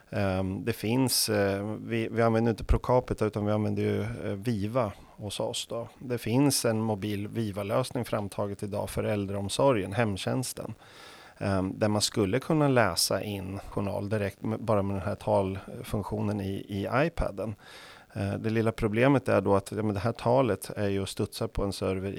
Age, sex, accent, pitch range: 30-49, male, native, 100-115 Hz